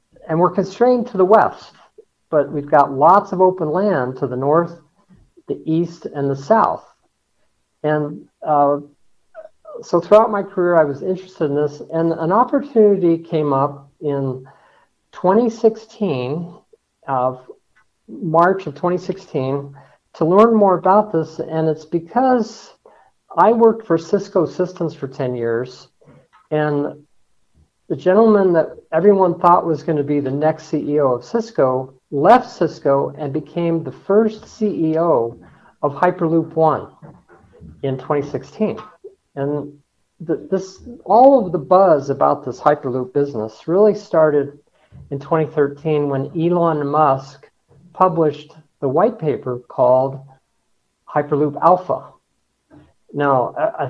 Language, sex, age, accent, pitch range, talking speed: English, male, 50-69, American, 145-190 Hz, 125 wpm